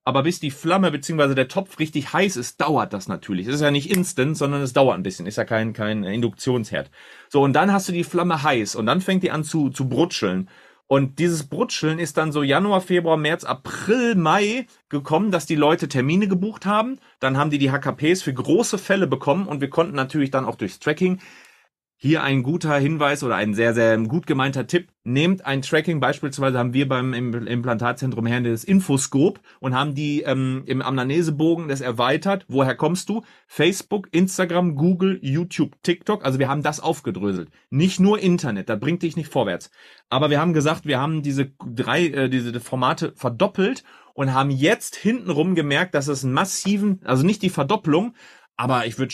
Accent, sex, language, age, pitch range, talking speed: German, male, German, 30-49, 130-175 Hz, 195 wpm